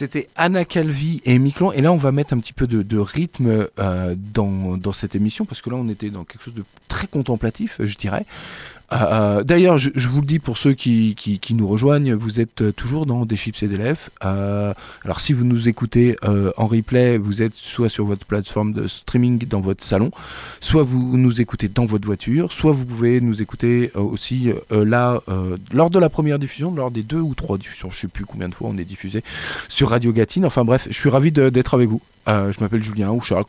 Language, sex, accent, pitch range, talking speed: French, male, French, 105-145 Hz, 235 wpm